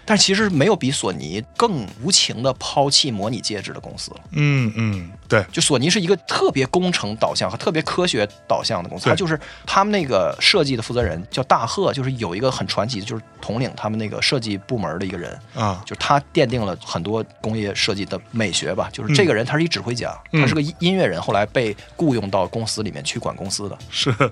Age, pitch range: 20-39, 115-170 Hz